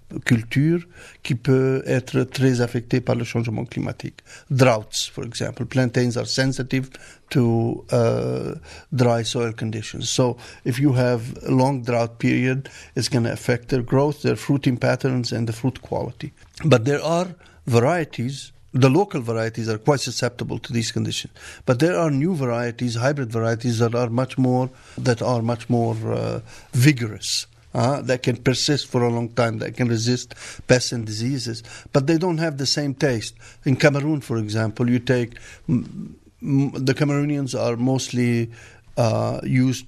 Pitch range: 115-135 Hz